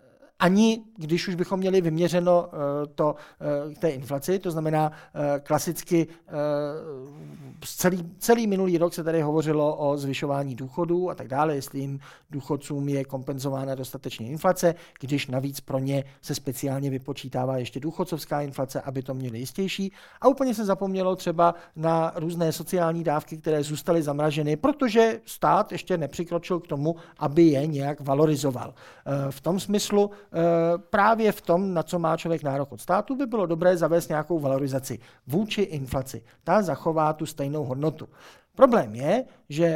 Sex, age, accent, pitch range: male, 50-69, native, 140-180 Hz